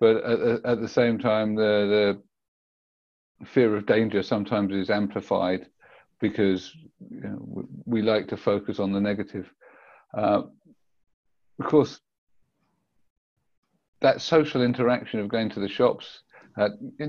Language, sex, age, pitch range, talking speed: English, male, 50-69, 105-125 Hz, 125 wpm